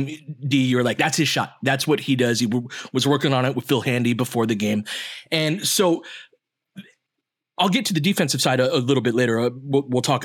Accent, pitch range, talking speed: American, 125-165 Hz, 225 wpm